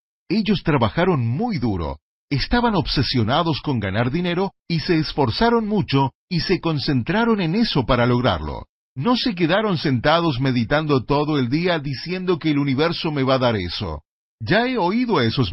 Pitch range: 115-170 Hz